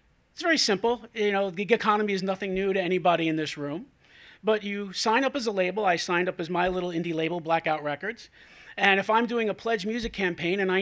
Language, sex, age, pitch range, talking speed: English, male, 40-59, 170-210 Hz, 235 wpm